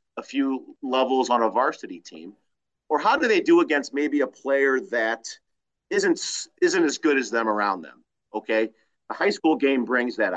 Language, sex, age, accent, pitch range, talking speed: English, male, 40-59, American, 110-145 Hz, 185 wpm